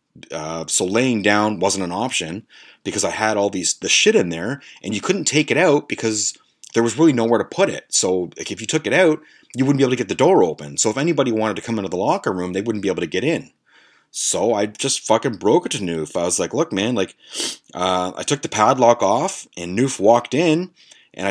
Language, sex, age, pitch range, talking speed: English, male, 30-49, 95-130 Hz, 250 wpm